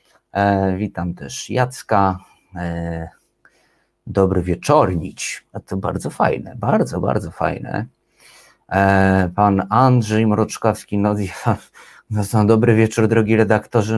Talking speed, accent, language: 105 wpm, native, Polish